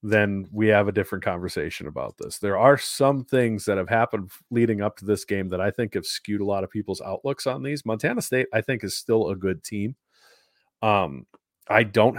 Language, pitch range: English, 105-125 Hz